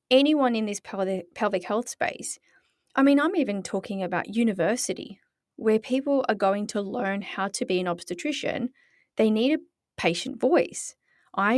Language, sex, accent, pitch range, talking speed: English, female, Australian, 195-255 Hz, 155 wpm